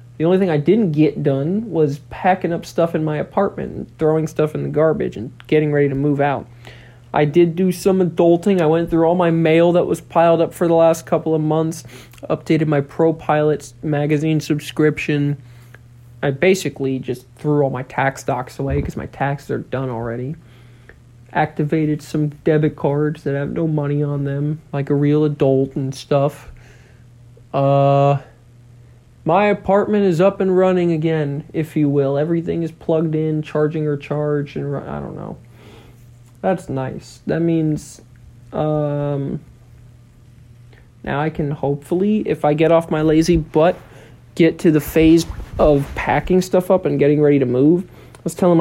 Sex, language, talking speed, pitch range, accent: male, English, 170 wpm, 135-165 Hz, American